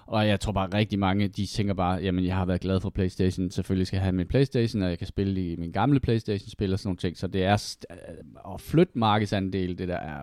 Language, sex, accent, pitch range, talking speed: Danish, male, native, 95-115 Hz, 265 wpm